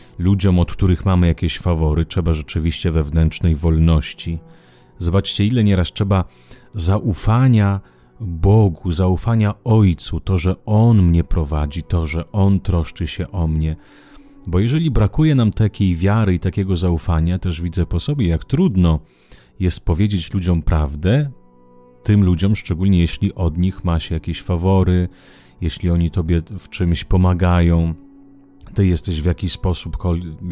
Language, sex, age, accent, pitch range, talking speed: Italian, male, 30-49, Polish, 85-105 Hz, 135 wpm